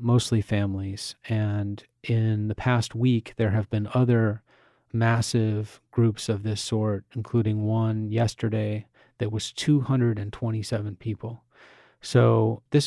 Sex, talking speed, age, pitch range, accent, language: male, 115 wpm, 30-49, 110-120 Hz, American, English